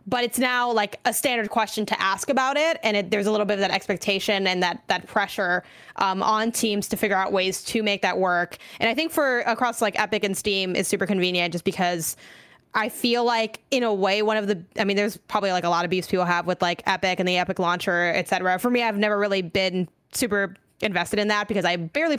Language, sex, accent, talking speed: English, female, American, 245 wpm